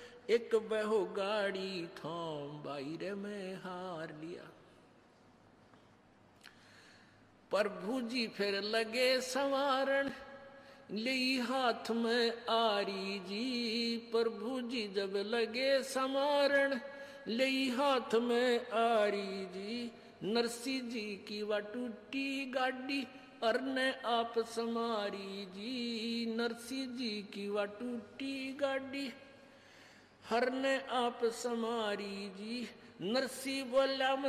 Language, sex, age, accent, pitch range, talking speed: Hindi, male, 60-79, native, 195-250 Hz, 90 wpm